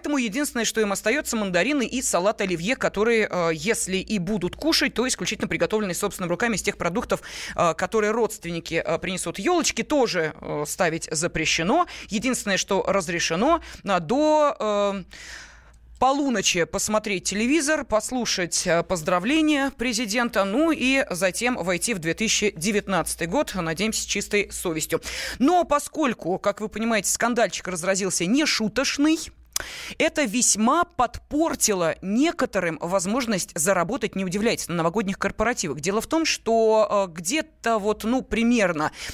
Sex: female